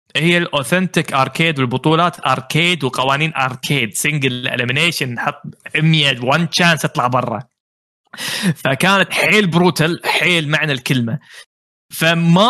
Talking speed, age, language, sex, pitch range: 105 wpm, 20-39, Arabic, male, 135-185 Hz